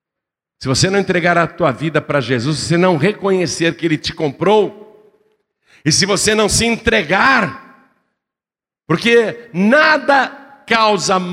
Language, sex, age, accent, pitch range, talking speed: Portuguese, male, 60-79, Brazilian, 155-230 Hz, 140 wpm